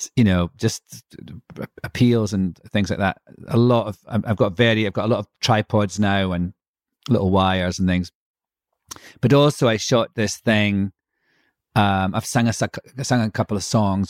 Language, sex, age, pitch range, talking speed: English, male, 40-59, 95-115 Hz, 180 wpm